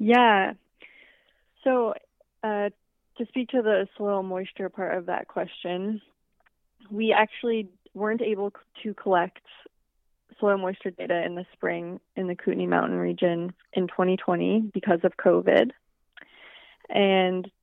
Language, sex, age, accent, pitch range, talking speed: English, female, 20-39, American, 180-215 Hz, 125 wpm